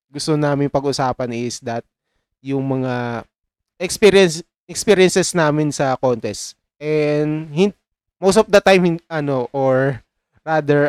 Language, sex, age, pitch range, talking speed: Filipino, male, 20-39, 120-155 Hz, 120 wpm